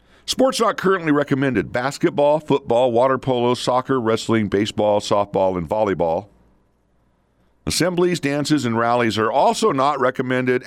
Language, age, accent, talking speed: English, 50-69, American, 125 wpm